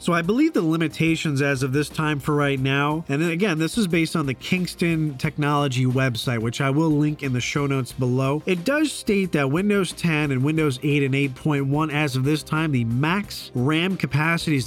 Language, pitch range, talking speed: English, 135-175 Hz, 210 wpm